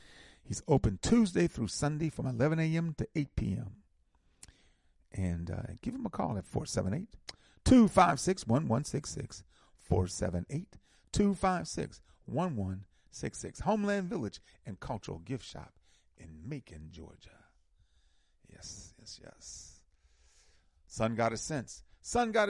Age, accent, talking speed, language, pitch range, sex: 40-59, American, 100 wpm, English, 90-140 Hz, male